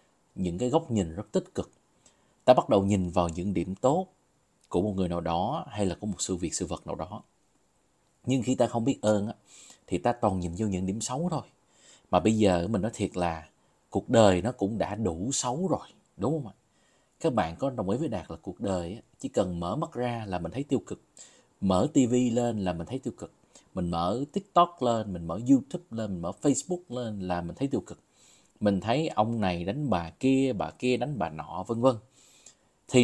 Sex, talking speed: male, 225 wpm